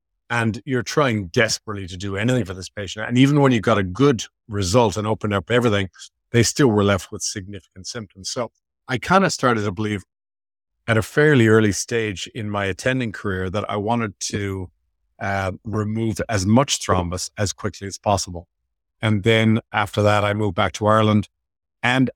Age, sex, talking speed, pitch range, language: 50-69, male, 185 wpm, 100-115 Hz, English